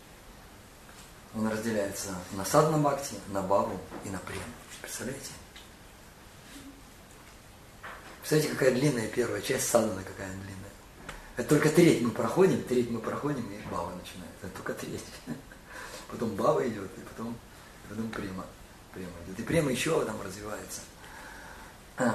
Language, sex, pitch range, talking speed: Russian, male, 100-130 Hz, 135 wpm